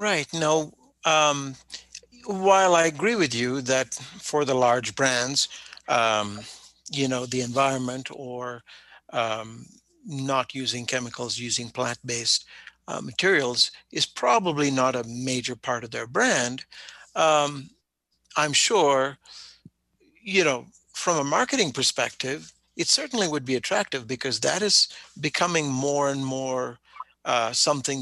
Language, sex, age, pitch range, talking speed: English, male, 60-79, 125-165 Hz, 125 wpm